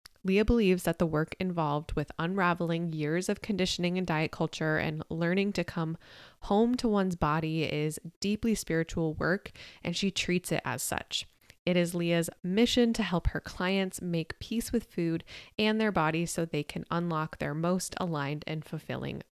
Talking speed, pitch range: 175 wpm, 160-190 Hz